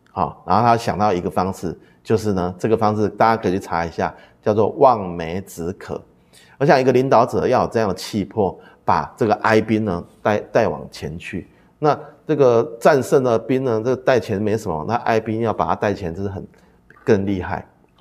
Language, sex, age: Chinese, male, 30-49